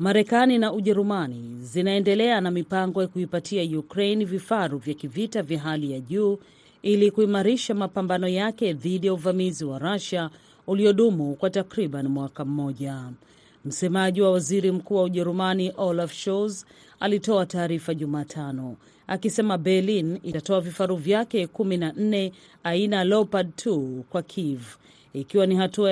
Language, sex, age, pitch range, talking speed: Swahili, female, 40-59, 155-200 Hz, 125 wpm